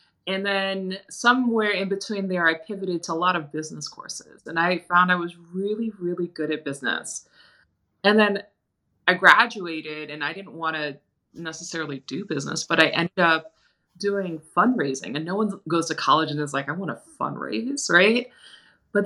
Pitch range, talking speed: 170-220 Hz, 180 wpm